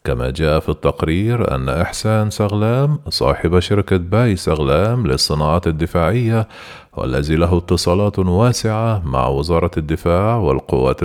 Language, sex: Arabic, male